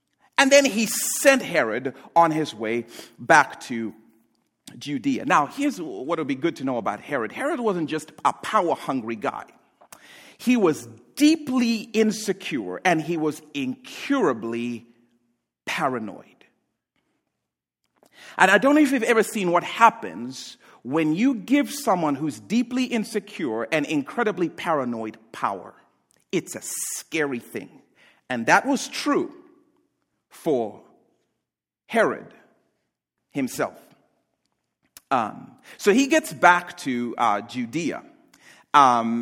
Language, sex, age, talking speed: English, male, 50-69, 120 wpm